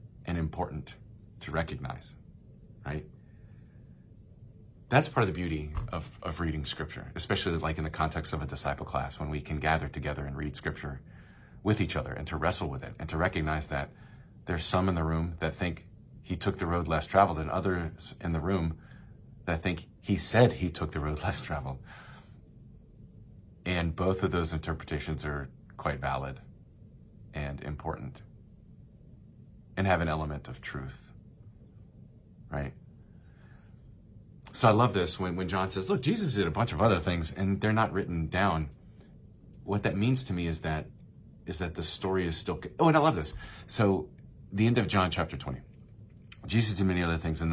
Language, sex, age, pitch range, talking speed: English, male, 30-49, 80-110 Hz, 175 wpm